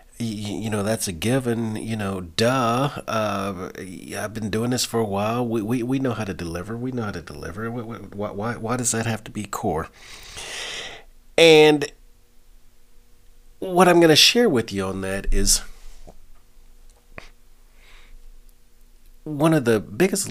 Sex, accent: male, American